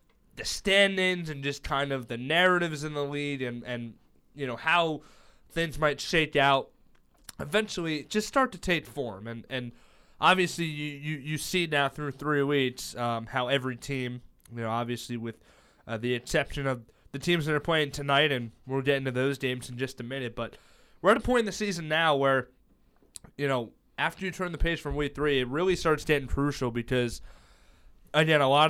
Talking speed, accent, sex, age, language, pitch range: 195 wpm, American, male, 20-39, English, 125-155 Hz